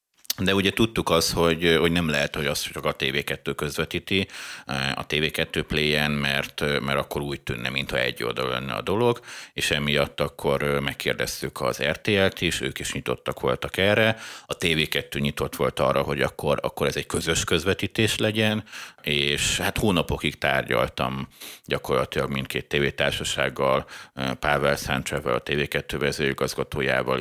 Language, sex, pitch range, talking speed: Hungarian, male, 70-80 Hz, 145 wpm